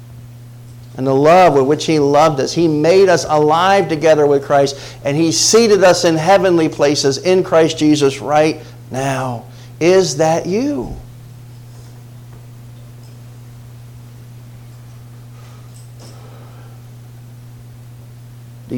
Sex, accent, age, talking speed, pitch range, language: male, American, 50-69, 100 wpm, 120-155 Hz, English